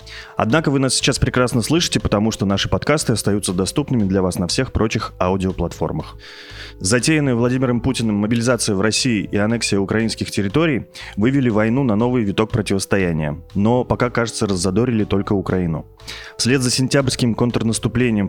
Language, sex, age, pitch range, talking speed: Russian, male, 20-39, 95-120 Hz, 145 wpm